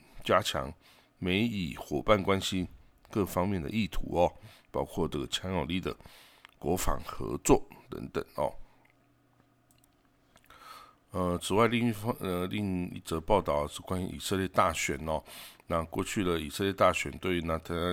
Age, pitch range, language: 60-79, 80-95 Hz, Chinese